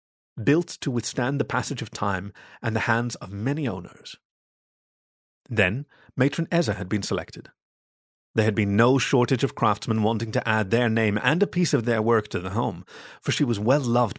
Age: 30-49